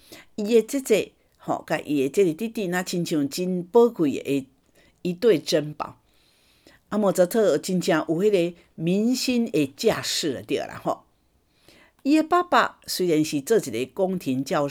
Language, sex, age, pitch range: Chinese, female, 50-69, 150-220 Hz